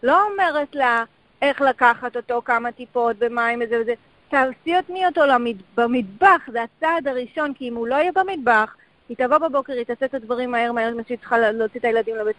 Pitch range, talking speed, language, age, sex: 230-290 Hz, 180 wpm, English, 30-49, female